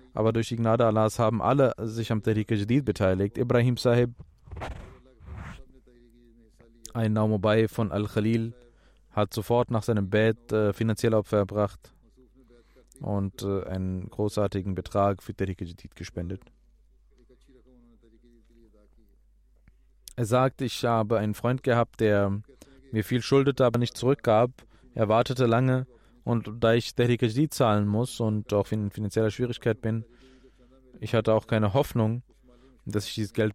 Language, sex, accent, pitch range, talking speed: German, male, German, 105-120 Hz, 130 wpm